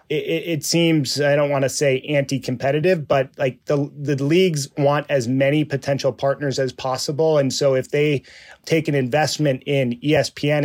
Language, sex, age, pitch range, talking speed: English, male, 30-49, 135-155 Hz, 165 wpm